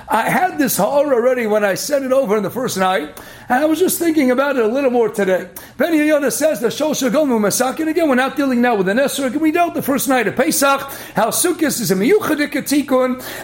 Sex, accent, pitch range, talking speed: male, American, 215-300 Hz, 230 wpm